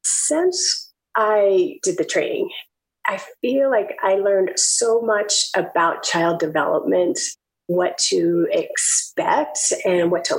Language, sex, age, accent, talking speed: English, female, 30-49, American, 120 wpm